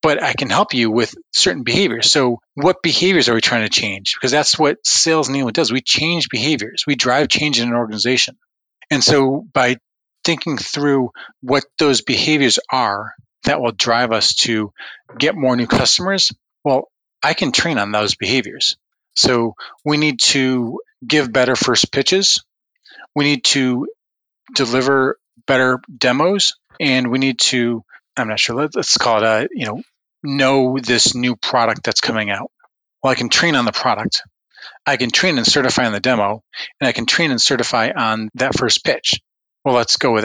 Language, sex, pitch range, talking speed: English, male, 120-150 Hz, 175 wpm